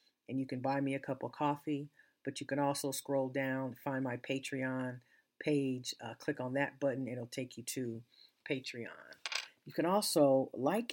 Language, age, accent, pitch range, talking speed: English, 50-69, American, 125-145 Hz, 180 wpm